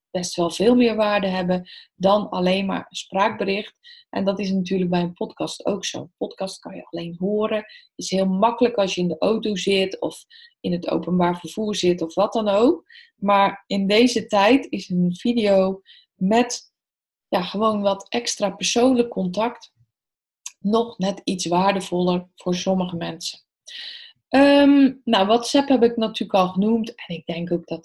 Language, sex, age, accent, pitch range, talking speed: Dutch, female, 20-39, Dutch, 180-240 Hz, 170 wpm